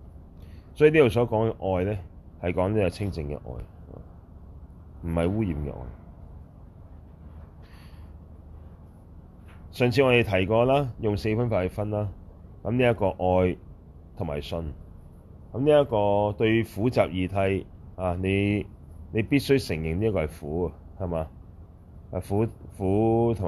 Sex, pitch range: male, 80-105 Hz